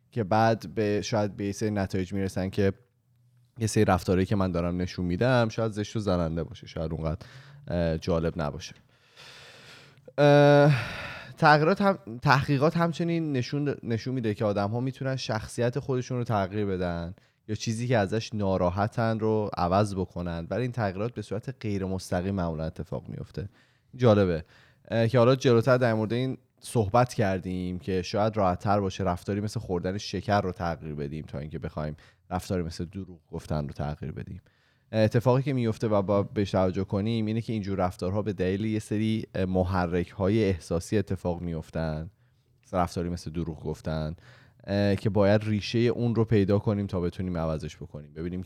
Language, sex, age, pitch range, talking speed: Persian, male, 20-39, 90-120 Hz, 155 wpm